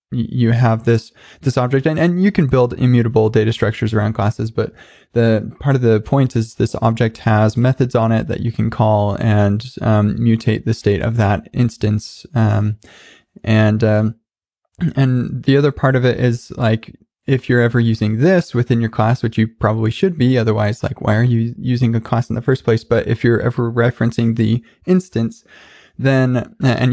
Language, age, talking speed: English, 20-39, 190 wpm